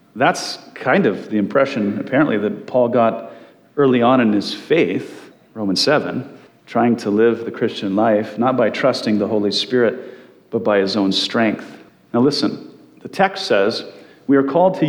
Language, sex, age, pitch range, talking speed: English, male, 40-59, 125-180 Hz, 170 wpm